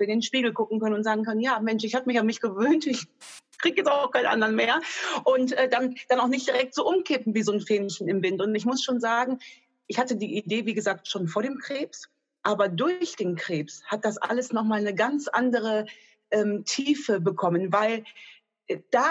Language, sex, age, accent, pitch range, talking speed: German, female, 30-49, German, 205-255 Hz, 225 wpm